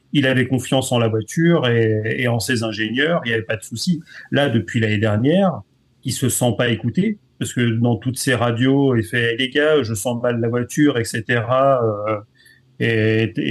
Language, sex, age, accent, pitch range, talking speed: French, male, 40-59, French, 115-135 Hz, 205 wpm